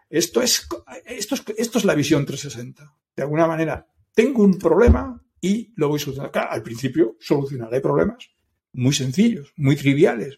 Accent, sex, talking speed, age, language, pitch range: Spanish, male, 170 wpm, 60-79, Spanish, 145-195 Hz